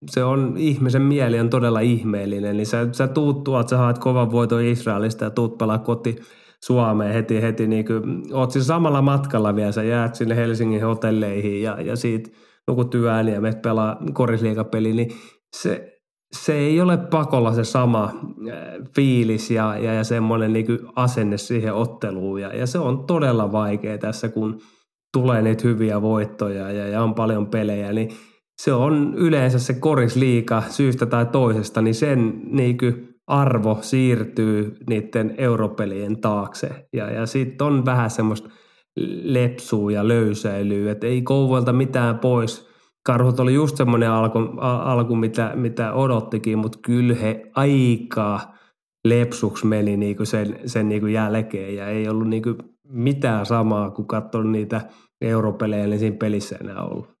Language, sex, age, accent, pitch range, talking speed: Finnish, male, 20-39, native, 110-125 Hz, 150 wpm